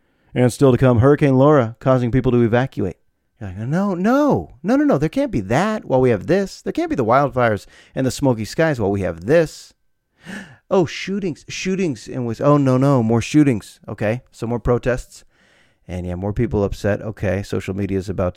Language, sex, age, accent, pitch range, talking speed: English, male, 30-49, American, 105-135 Hz, 205 wpm